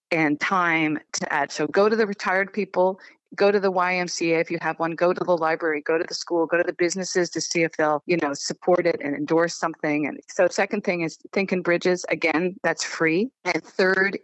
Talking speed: 225 wpm